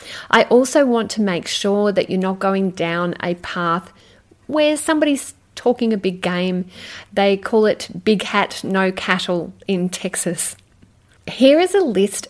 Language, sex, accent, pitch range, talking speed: English, female, Australian, 175-230 Hz, 155 wpm